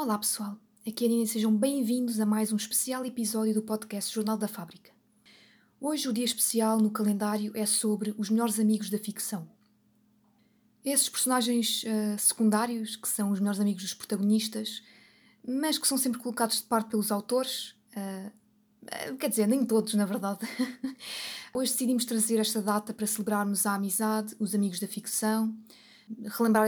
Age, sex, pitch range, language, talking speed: 20-39, female, 210-230 Hz, Portuguese, 160 wpm